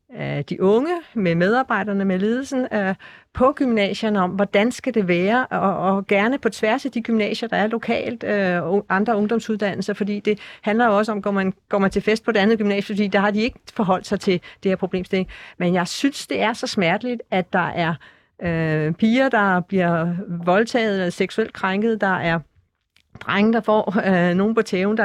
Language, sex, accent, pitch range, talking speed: Danish, female, native, 190-230 Hz, 200 wpm